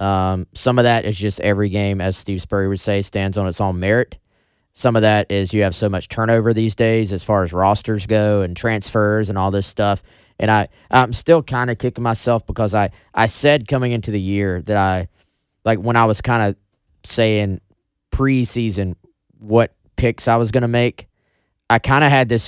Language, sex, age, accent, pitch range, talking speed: English, male, 20-39, American, 100-120 Hz, 210 wpm